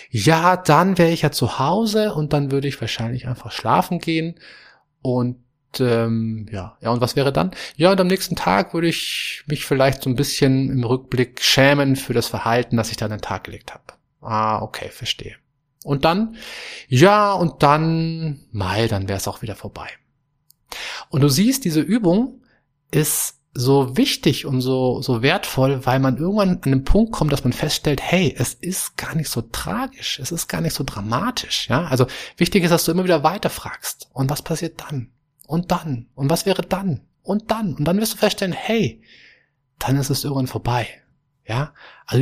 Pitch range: 125-170 Hz